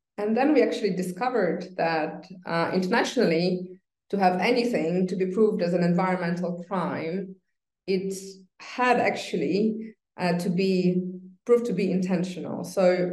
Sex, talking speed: female, 135 wpm